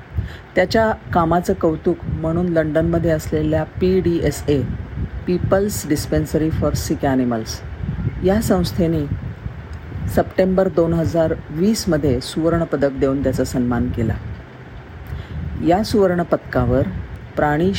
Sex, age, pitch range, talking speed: female, 40-59, 120-165 Hz, 80 wpm